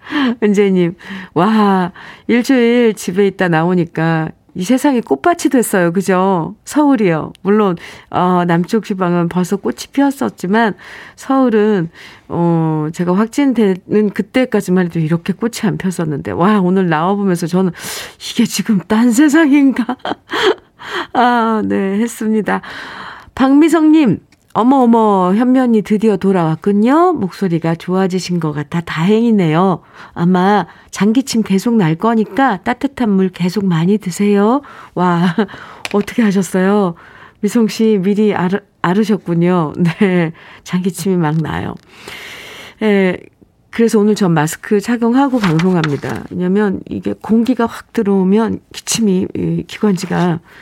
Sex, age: female, 40-59